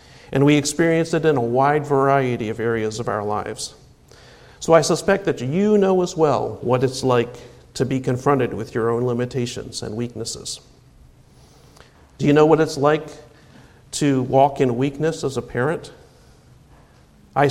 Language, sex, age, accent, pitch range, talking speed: English, male, 50-69, American, 120-150 Hz, 160 wpm